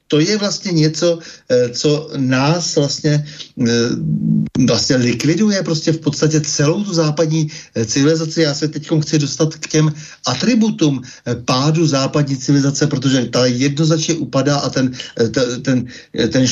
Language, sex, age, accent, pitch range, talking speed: Czech, male, 60-79, native, 125-150 Hz, 125 wpm